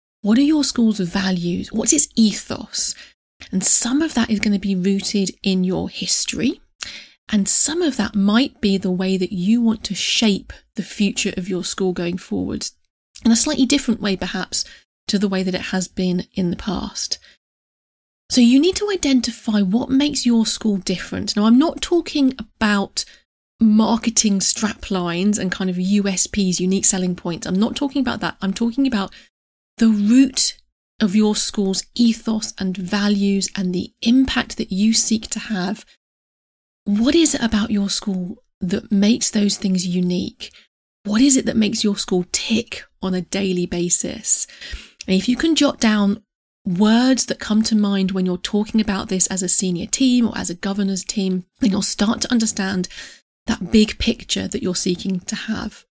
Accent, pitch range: British, 190-230 Hz